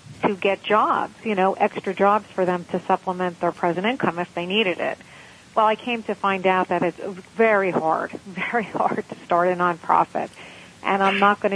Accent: American